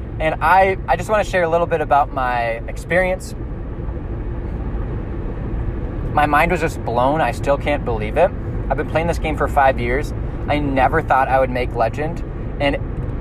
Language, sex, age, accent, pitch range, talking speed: English, male, 20-39, American, 115-145 Hz, 175 wpm